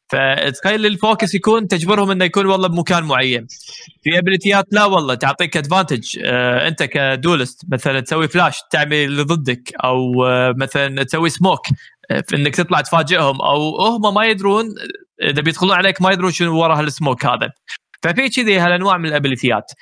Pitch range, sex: 140-200 Hz, male